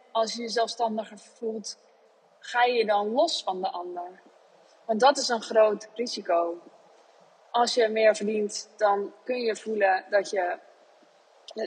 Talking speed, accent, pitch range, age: 145 wpm, Dutch, 195-250 Hz, 20-39